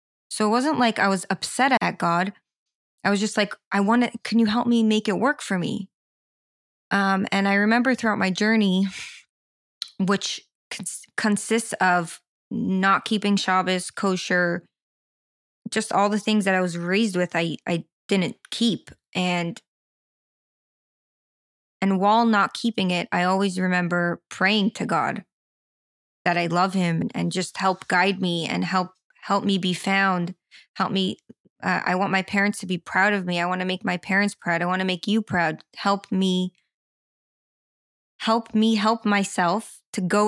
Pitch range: 180-215 Hz